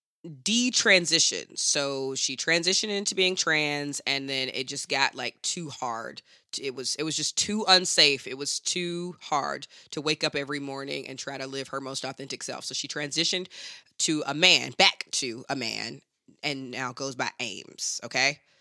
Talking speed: 175 wpm